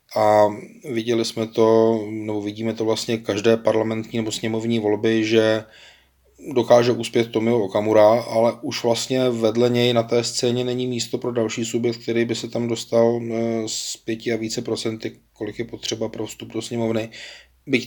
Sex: male